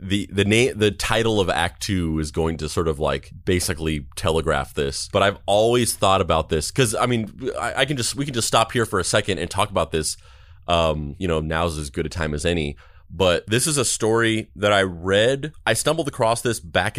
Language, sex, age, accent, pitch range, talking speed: English, male, 30-49, American, 85-105 Hz, 230 wpm